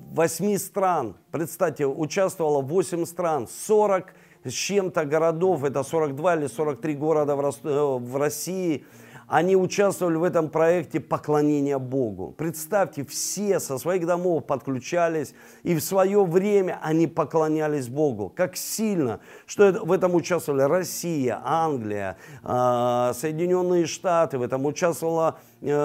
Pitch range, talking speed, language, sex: 155-195 Hz, 115 wpm, Russian, male